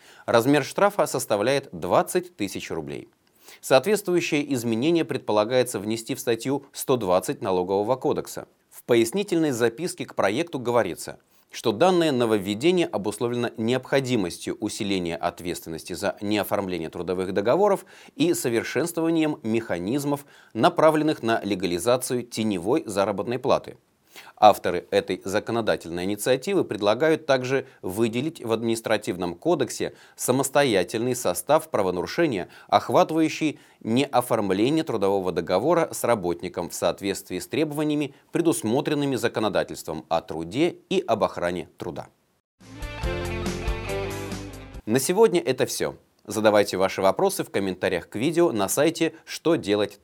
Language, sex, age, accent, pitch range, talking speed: Russian, male, 30-49, native, 100-155 Hz, 105 wpm